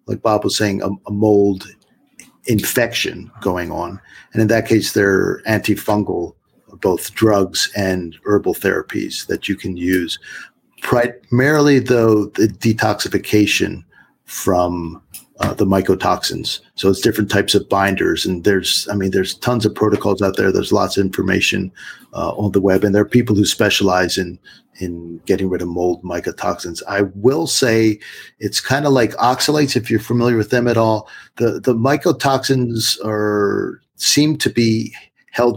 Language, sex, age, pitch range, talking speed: English, male, 50-69, 100-125 Hz, 155 wpm